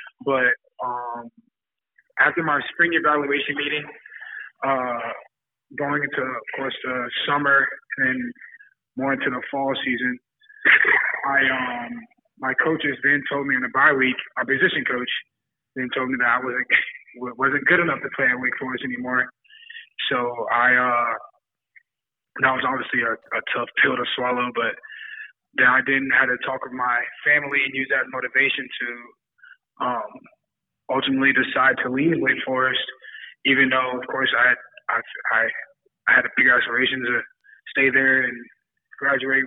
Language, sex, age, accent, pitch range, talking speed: English, male, 20-39, American, 125-150 Hz, 150 wpm